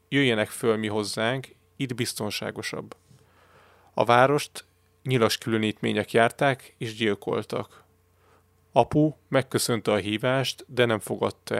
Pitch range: 105-125 Hz